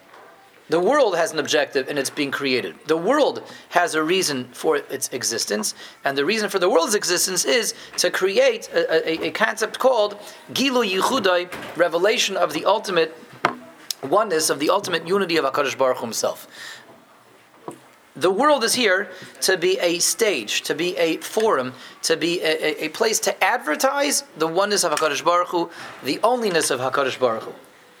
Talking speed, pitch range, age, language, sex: 170 wpm, 145-195 Hz, 30-49, English, male